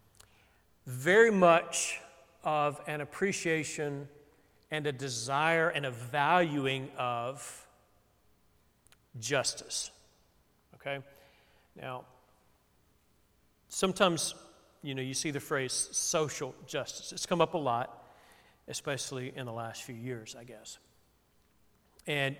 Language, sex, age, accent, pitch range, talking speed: English, male, 40-59, American, 125-155 Hz, 100 wpm